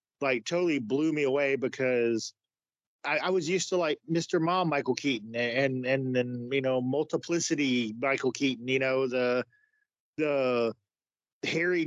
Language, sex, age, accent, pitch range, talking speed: English, male, 40-59, American, 130-155 Hz, 145 wpm